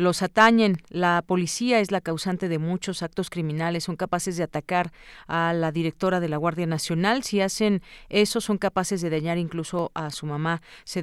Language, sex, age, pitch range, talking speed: Spanish, female, 40-59, 165-195 Hz, 185 wpm